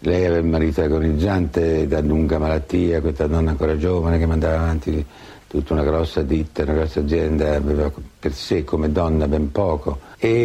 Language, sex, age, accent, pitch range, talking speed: Italian, male, 60-79, native, 75-85 Hz, 170 wpm